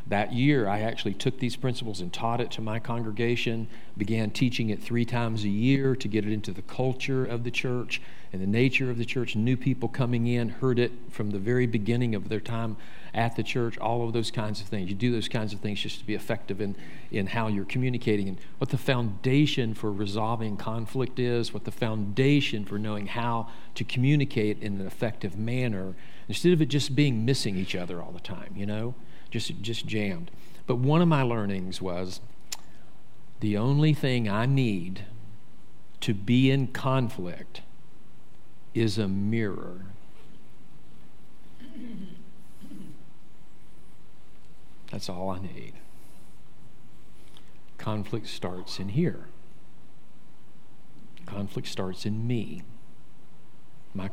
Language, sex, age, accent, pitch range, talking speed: English, male, 50-69, American, 105-125 Hz, 155 wpm